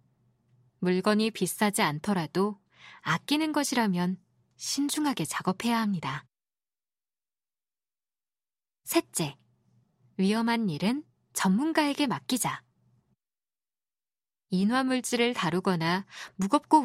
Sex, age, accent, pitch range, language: female, 20-39, native, 175-255 Hz, Korean